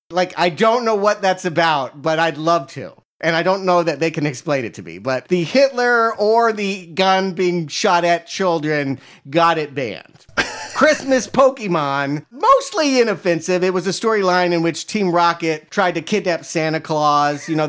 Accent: American